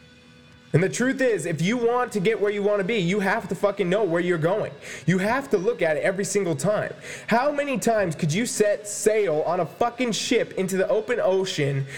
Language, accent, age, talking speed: English, American, 20-39, 230 wpm